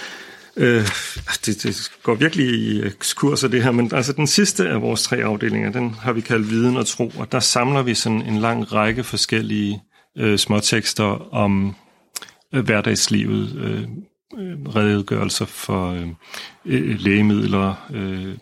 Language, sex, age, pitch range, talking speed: Danish, male, 40-59, 100-120 Hz, 135 wpm